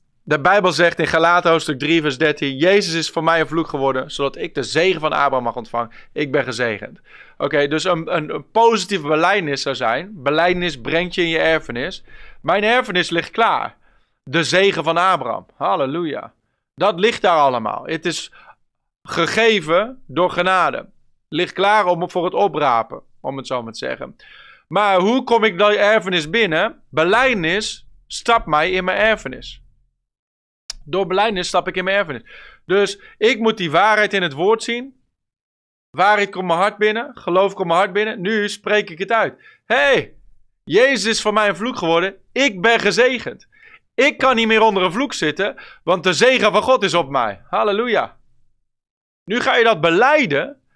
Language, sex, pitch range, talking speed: Dutch, male, 165-220 Hz, 175 wpm